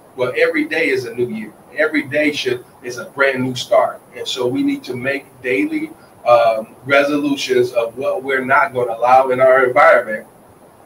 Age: 40-59